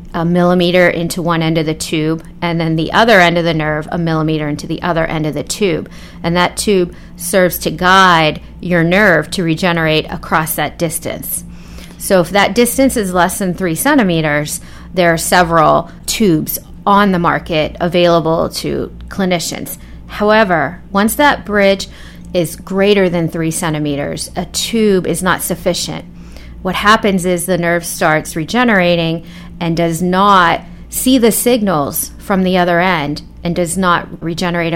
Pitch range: 165-195 Hz